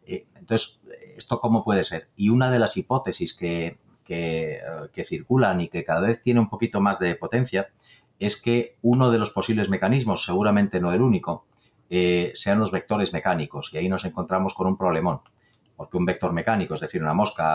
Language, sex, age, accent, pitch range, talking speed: Spanish, male, 30-49, Spanish, 90-115 Hz, 185 wpm